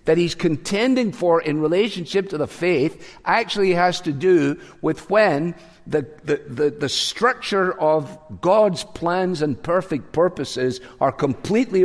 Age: 50-69